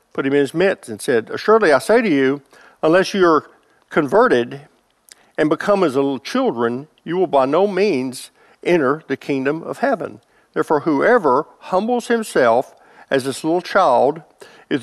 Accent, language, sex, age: American, English, male, 50-69